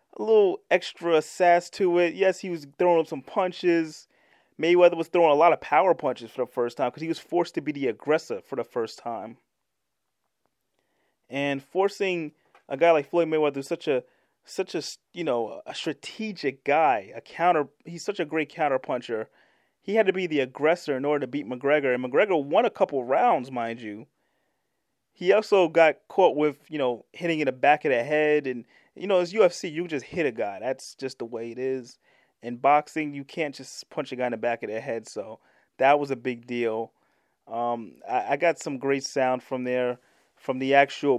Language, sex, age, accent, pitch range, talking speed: English, male, 30-49, American, 125-165 Hz, 210 wpm